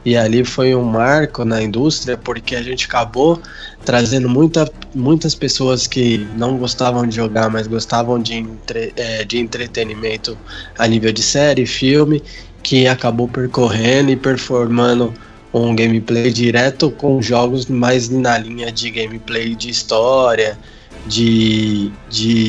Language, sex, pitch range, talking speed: Portuguese, male, 110-130 Hz, 130 wpm